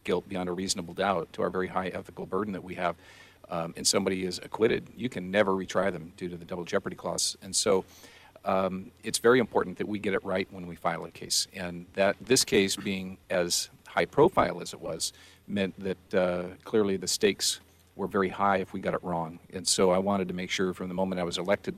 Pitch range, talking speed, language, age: 90-95 Hz, 230 wpm, English, 40-59